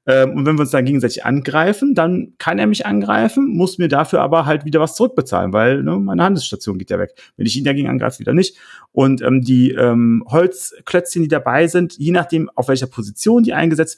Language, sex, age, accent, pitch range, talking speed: German, male, 40-59, German, 120-160 Hz, 205 wpm